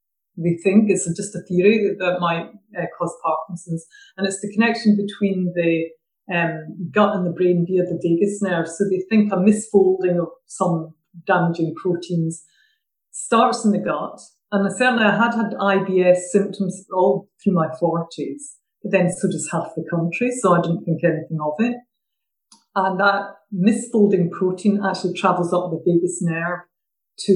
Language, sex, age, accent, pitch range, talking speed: English, female, 50-69, British, 170-210 Hz, 165 wpm